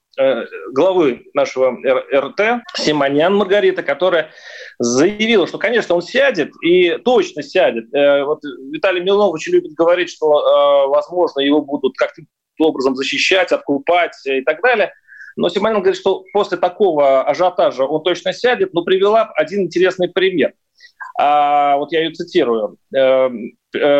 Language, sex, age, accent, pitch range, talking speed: Russian, male, 30-49, native, 155-250 Hz, 120 wpm